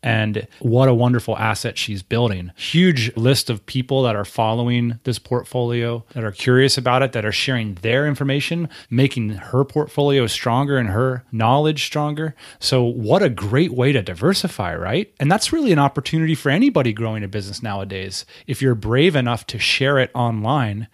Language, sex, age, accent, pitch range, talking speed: English, male, 30-49, American, 115-150 Hz, 175 wpm